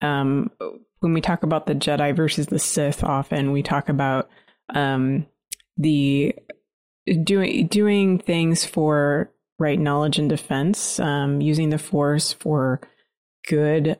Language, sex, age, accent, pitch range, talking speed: English, female, 20-39, American, 145-170 Hz, 130 wpm